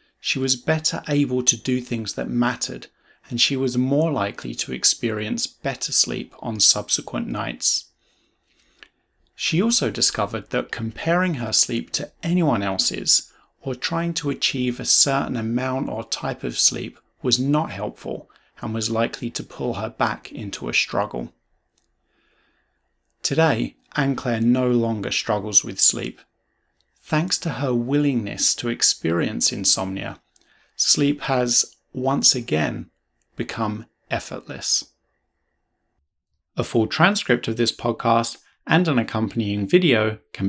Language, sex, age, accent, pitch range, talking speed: English, male, 30-49, British, 115-150 Hz, 125 wpm